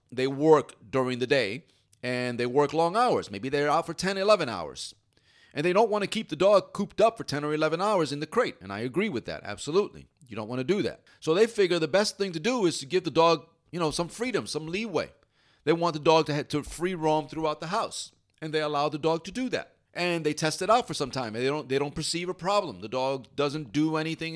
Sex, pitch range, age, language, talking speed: male, 135-180 Hz, 40-59, English, 255 wpm